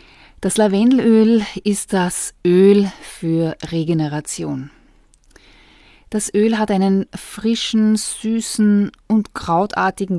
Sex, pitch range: female, 165-210 Hz